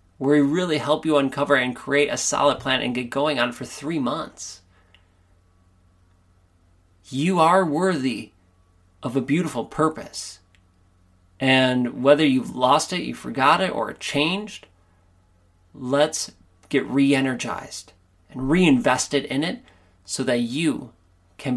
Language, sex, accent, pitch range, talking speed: English, male, American, 90-145 Hz, 130 wpm